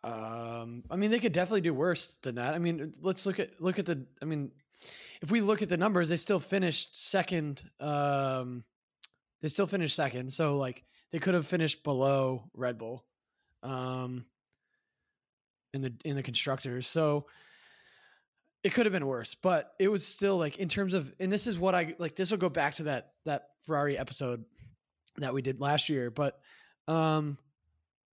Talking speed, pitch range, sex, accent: 185 wpm, 140-205 Hz, male, American